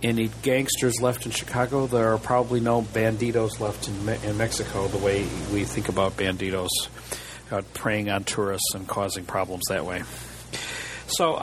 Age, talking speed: 50-69, 165 wpm